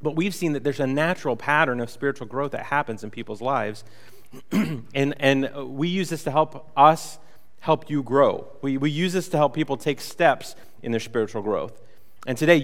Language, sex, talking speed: English, male, 200 wpm